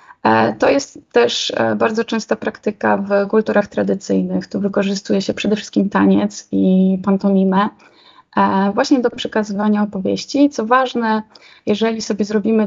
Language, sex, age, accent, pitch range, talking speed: Polish, female, 20-39, native, 190-220 Hz, 125 wpm